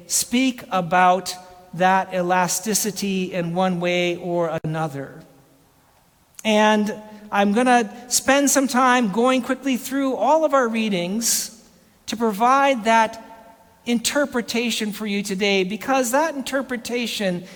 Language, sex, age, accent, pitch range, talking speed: English, male, 50-69, American, 185-245 Hz, 115 wpm